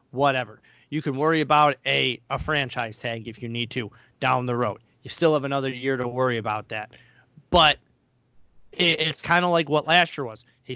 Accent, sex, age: American, male, 40-59